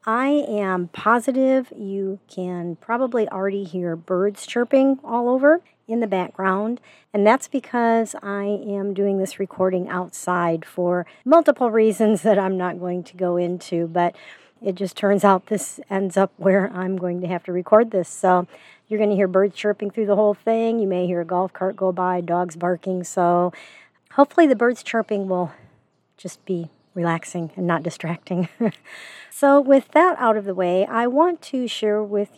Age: 50-69